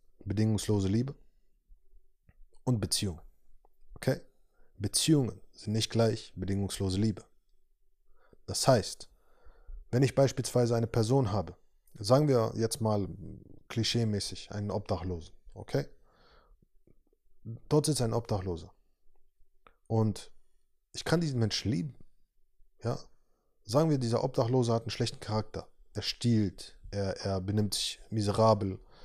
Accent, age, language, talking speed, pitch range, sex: German, 20-39, German, 110 wpm, 100-125 Hz, male